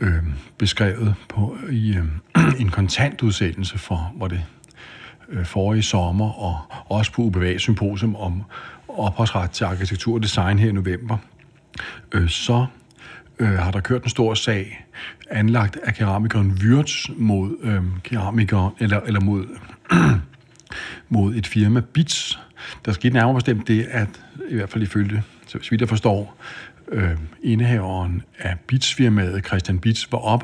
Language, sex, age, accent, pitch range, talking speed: Danish, male, 60-79, native, 95-115 Hz, 140 wpm